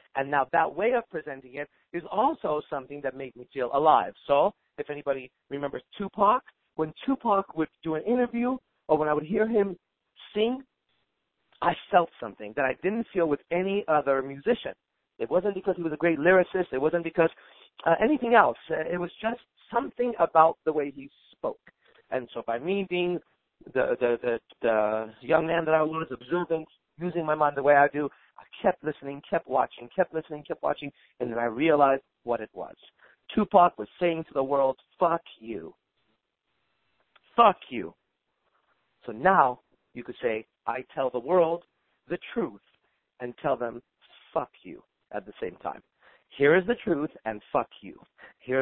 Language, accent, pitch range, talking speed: English, American, 135-185 Hz, 175 wpm